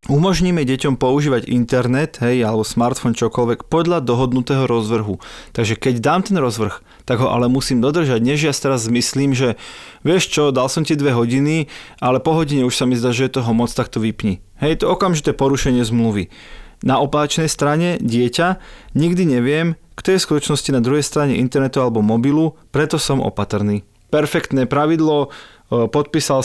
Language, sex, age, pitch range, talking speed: Slovak, male, 30-49, 125-150 Hz, 165 wpm